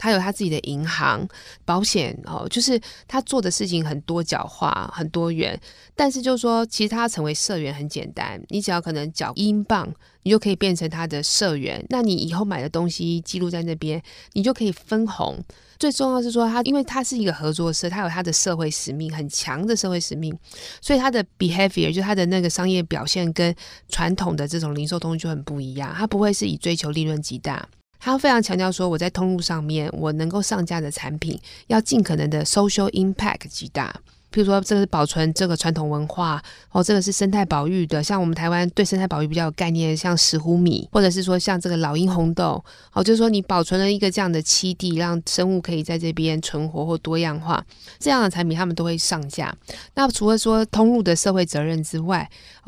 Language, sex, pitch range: Chinese, female, 160-200 Hz